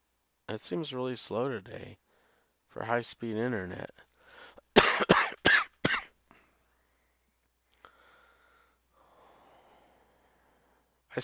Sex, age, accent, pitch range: male, 30-49, American, 95-120 Hz